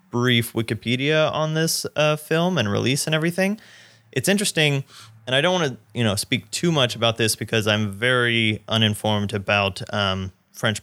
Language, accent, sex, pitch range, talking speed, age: English, American, male, 110-140 Hz, 170 wpm, 30-49